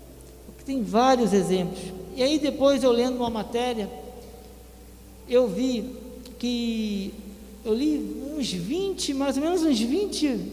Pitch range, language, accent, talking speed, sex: 225-275 Hz, Portuguese, Brazilian, 125 wpm, male